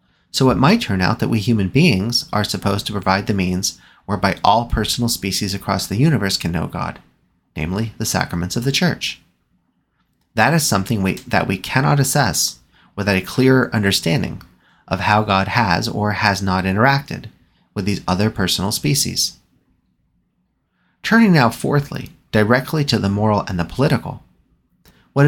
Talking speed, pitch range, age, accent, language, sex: 155 wpm, 95-120 Hz, 30-49, American, English, male